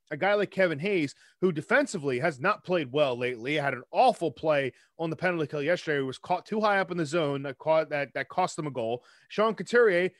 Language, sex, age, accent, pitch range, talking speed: English, male, 30-49, American, 155-210 Hz, 235 wpm